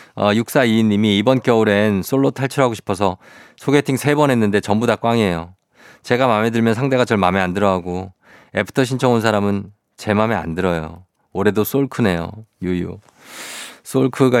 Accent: native